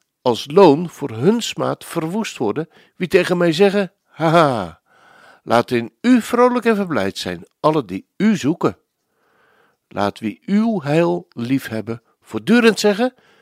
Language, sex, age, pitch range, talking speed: Dutch, male, 60-79, 125-190 Hz, 140 wpm